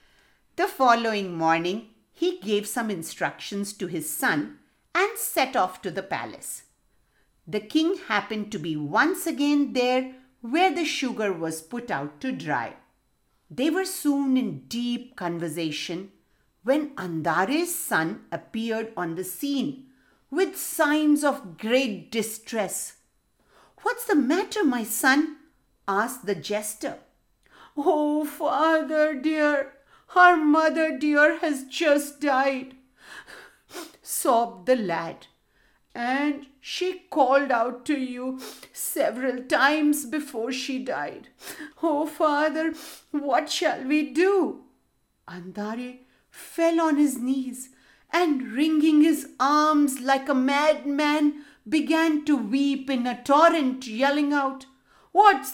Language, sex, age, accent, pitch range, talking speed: English, female, 50-69, Indian, 240-310 Hz, 115 wpm